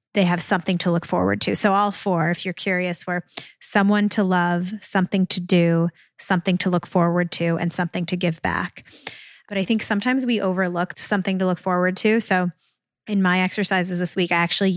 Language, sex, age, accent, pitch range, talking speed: English, female, 20-39, American, 175-200 Hz, 200 wpm